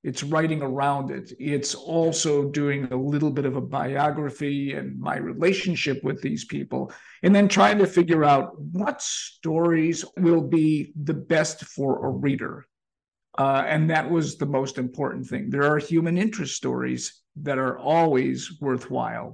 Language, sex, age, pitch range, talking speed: English, male, 50-69, 135-165 Hz, 160 wpm